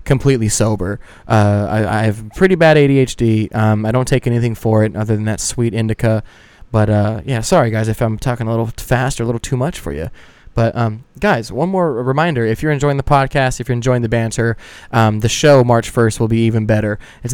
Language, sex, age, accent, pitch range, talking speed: English, male, 20-39, American, 110-130 Hz, 225 wpm